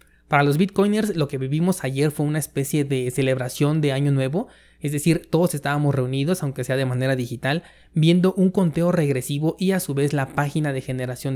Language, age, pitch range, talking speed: Spanish, 20-39, 135-160 Hz, 195 wpm